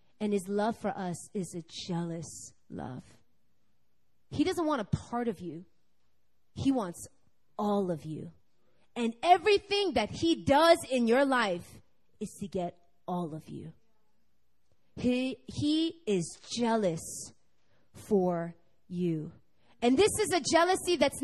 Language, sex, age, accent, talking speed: English, female, 30-49, American, 135 wpm